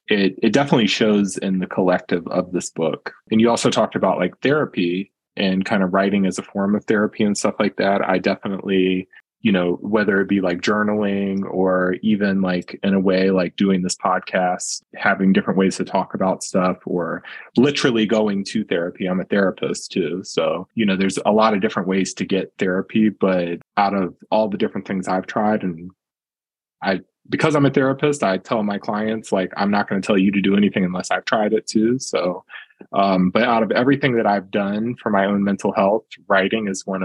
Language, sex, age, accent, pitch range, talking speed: English, male, 20-39, American, 95-105 Hz, 205 wpm